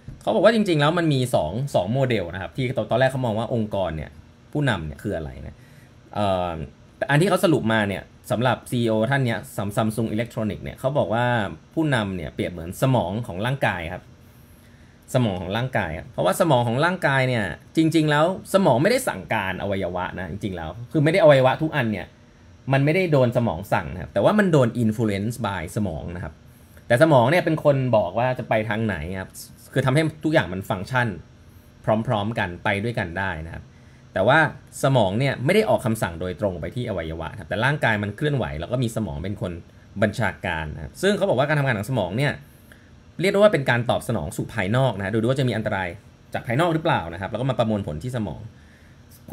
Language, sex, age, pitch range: Thai, male, 20-39, 100-130 Hz